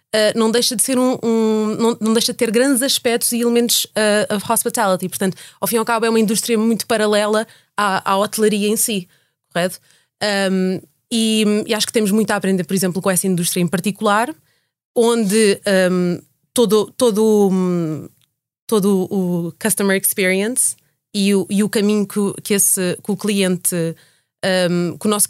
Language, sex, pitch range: Portuguese, female, 195-235 Hz